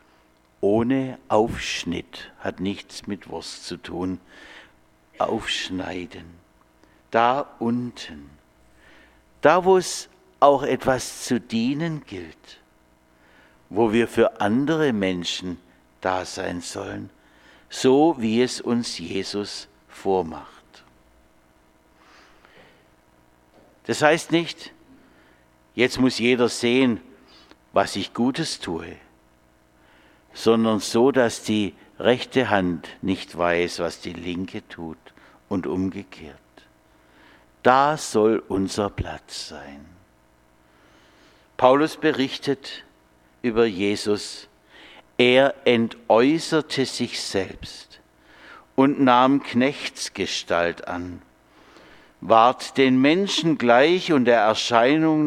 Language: German